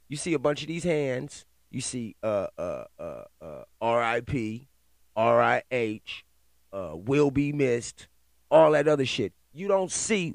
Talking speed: 150 wpm